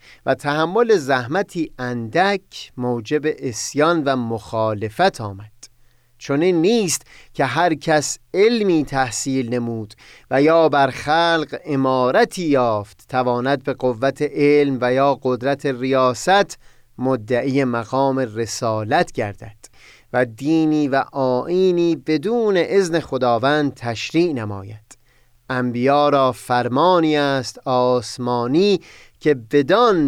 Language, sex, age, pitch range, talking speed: Persian, male, 30-49, 125-155 Hz, 100 wpm